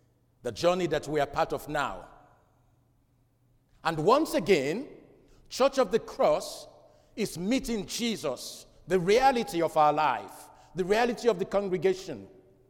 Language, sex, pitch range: English, male, 145-225 Hz